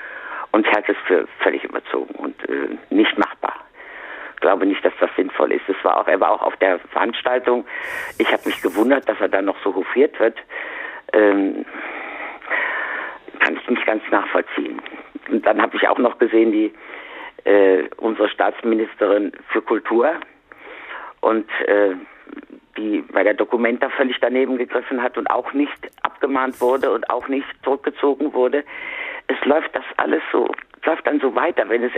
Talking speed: 165 wpm